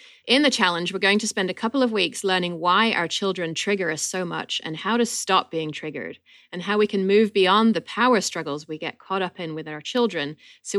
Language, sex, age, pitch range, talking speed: English, female, 30-49, 170-220 Hz, 240 wpm